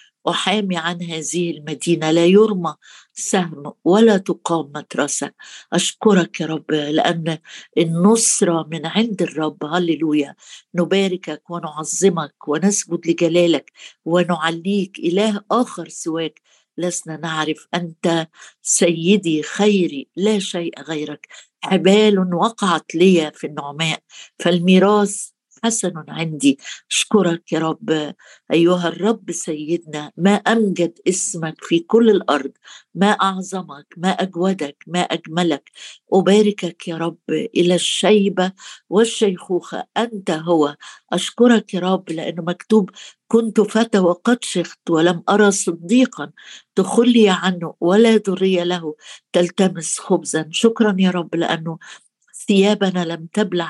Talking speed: 105 wpm